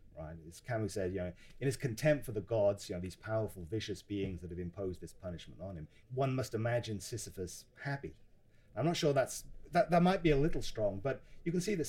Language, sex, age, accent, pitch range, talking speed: English, male, 30-49, British, 95-135 Hz, 230 wpm